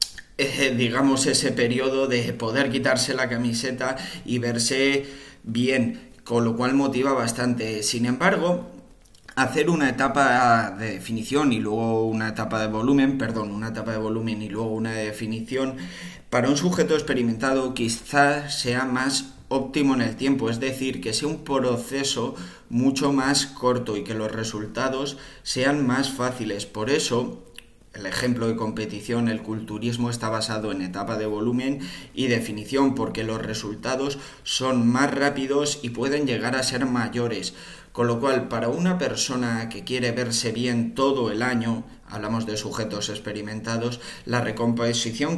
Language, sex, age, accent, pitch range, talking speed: Spanish, male, 20-39, Spanish, 110-135 Hz, 150 wpm